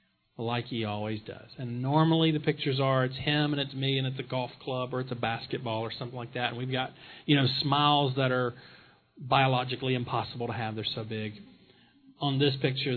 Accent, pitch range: American, 120-155 Hz